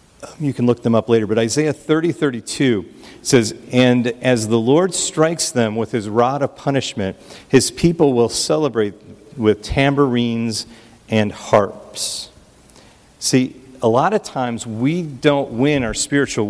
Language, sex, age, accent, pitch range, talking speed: English, male, 50-69, American, 110-130 Hz, 150 wpm